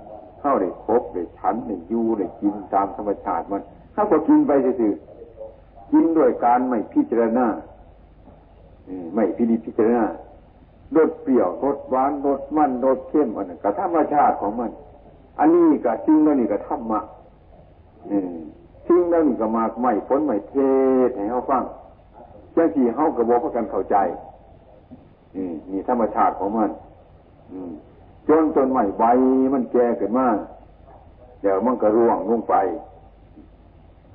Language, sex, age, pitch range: Thai, male, 60-79, 100-140 Hz